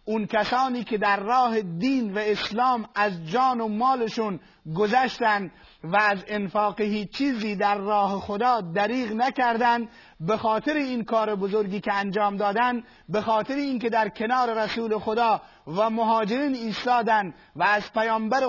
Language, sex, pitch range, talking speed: Persian, male, 210-245 Hz, 145 wpm